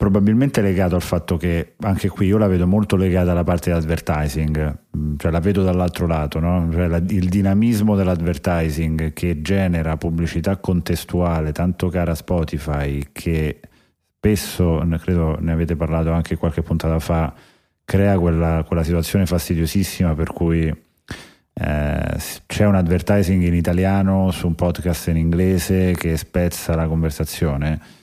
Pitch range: 80-90 Hz